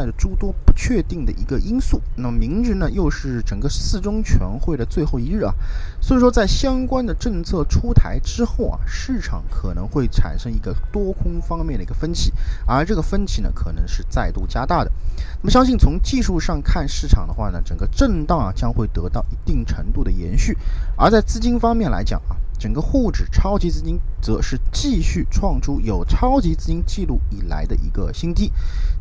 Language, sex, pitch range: Chinese, male, 85-140 Hz